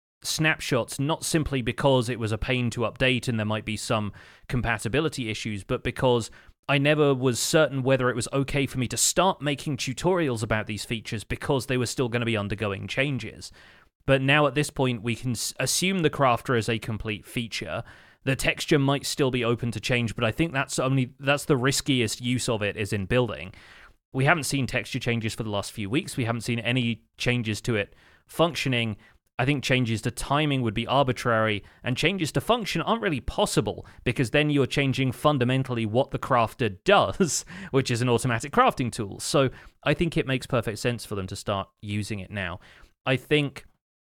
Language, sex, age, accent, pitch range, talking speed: English, male, 30-49, British, 110-140 Hz, 195 wpm